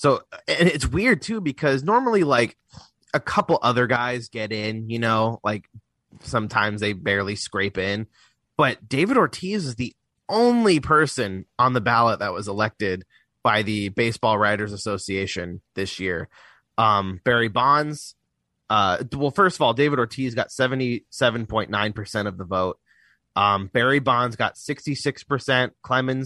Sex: male